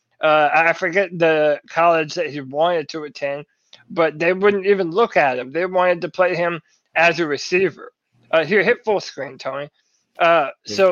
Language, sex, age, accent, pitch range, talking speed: English, male, 20-39, American, 165-200 Hz, 180 wpm